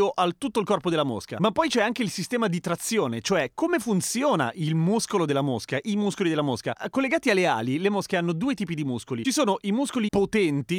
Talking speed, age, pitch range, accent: 220 wpm, 30-49, 145-210 Hz, native